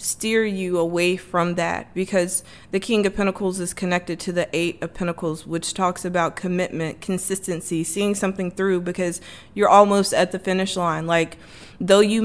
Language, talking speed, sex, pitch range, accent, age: English, 170 wpm, female, 175-200 Hz, American, 20-39